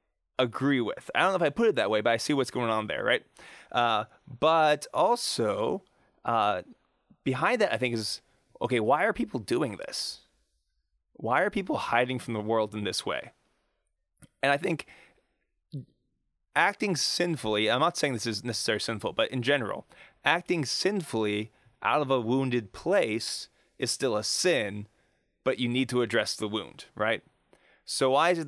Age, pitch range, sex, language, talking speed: 20-39, 110-140 Hz, male, English, 175 wpm